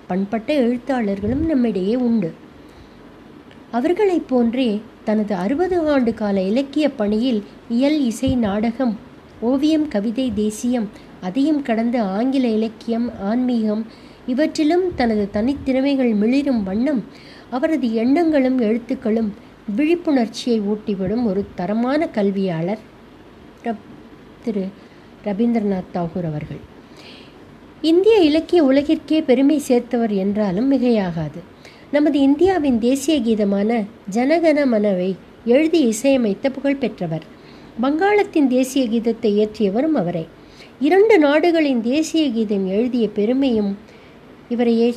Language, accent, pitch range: Tamil, native, 215-280 Hz